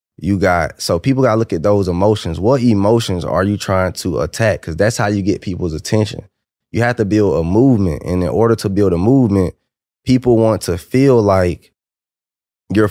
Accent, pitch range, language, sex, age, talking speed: American, 100-125 Hz, English, male, 20-39, 200 wpm